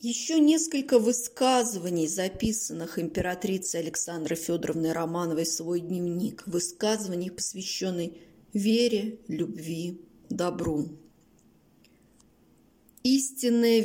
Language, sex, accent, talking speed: Russian, female, native, 75 wpm